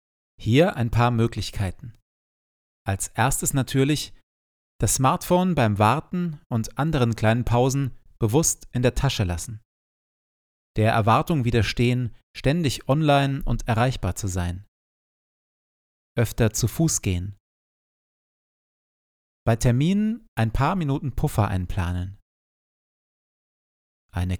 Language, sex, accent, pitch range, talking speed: German, male, German, 100-135 Hz, 100 wpm